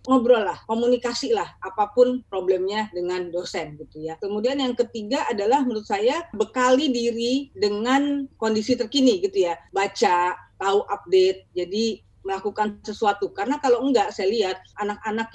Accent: native